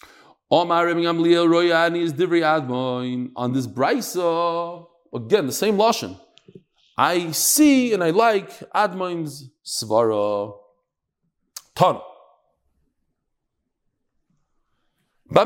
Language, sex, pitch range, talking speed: English, male, 150-235 Hz, 65 wpm